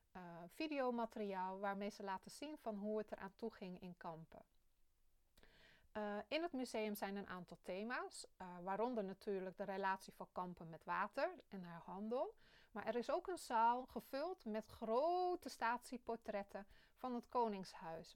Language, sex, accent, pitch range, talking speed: Dutch, female, Dutch, 200-255 Hz, 155 wpm